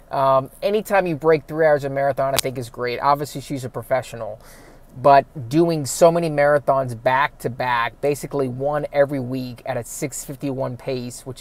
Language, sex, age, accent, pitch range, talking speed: English, male, 20-39, American, 130-150 Hz, 175 wpm